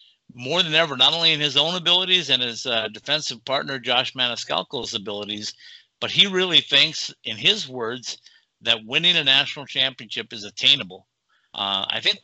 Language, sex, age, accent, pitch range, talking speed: English, male, 50-69, American, 115-155 Hz, 165 wpm